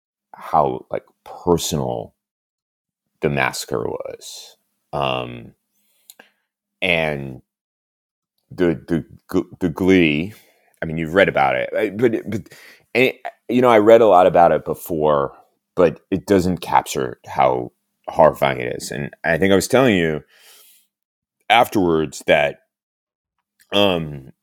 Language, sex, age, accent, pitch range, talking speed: English, male, 30-49, American, 75-95 Hz, 125 wpm